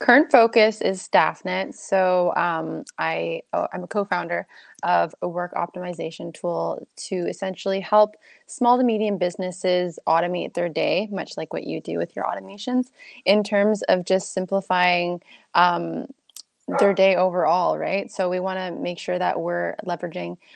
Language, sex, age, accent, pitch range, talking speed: English, female, 20-39, American, 175-205 Hz, 160 wpm